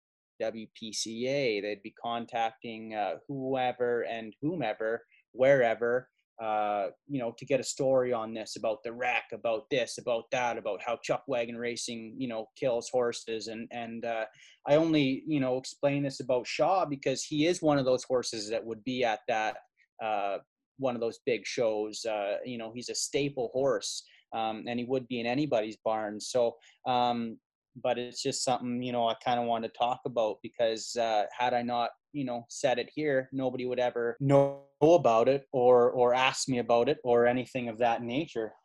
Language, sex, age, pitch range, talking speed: English, male, 20-39, 115-130 Hz, 185 wpm